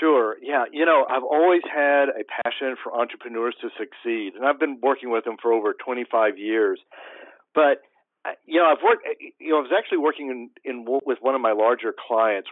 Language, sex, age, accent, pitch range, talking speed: English, male, 50-69, American, 120-175 Hz, 200 wpm